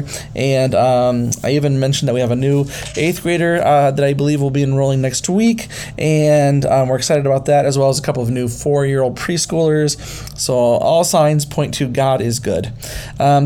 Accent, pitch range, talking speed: American, 130-155 Hz, 200 wpm